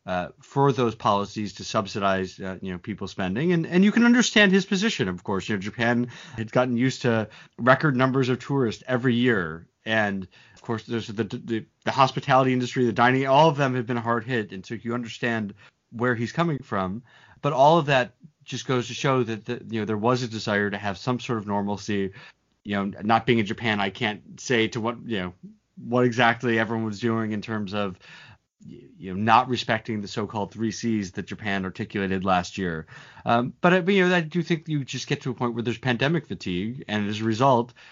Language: English